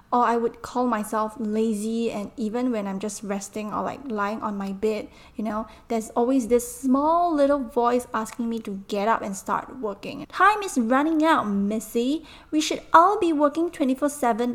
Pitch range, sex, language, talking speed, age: 215-245 Hz, female, English, 185 wpm, 10-29